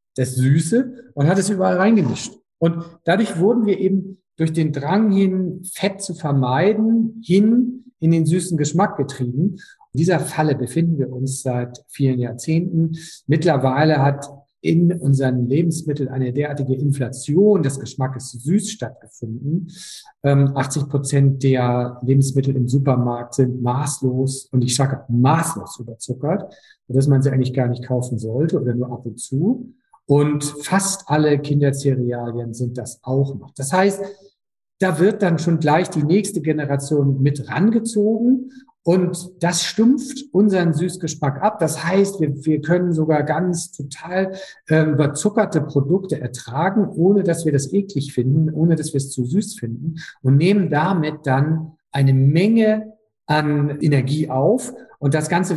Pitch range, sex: 135-185 Hz, male